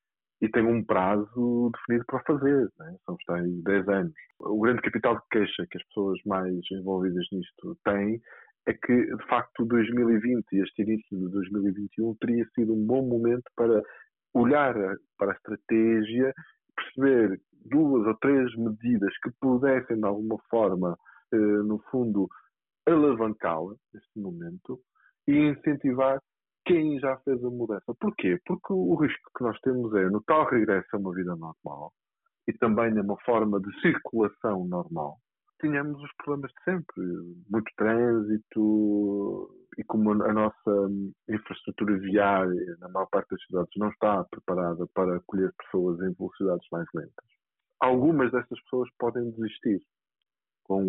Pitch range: 100-130 Hz